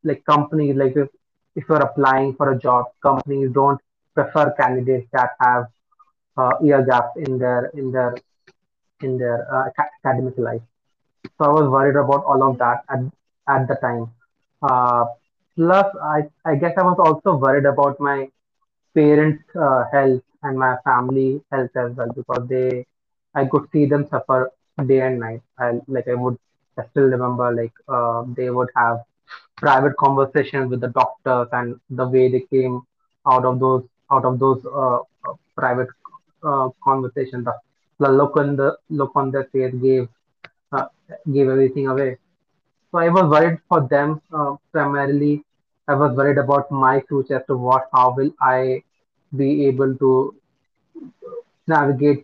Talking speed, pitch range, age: 165 wpm, 125-145 Hz, 30-49